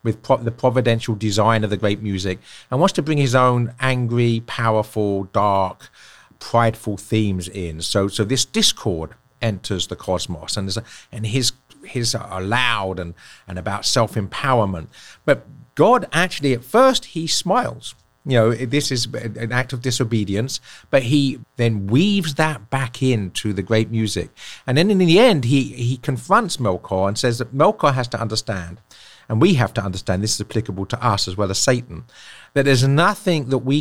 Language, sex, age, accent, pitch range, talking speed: English, male, 50-69, British, 105-135 Hz, 175 wpm